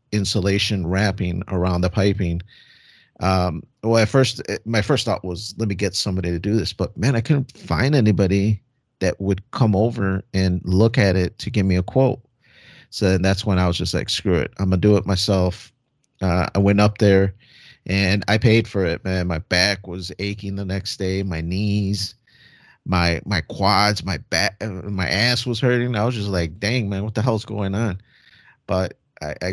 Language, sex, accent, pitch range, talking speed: English, male, American, 90-110 Hz, 195 wpm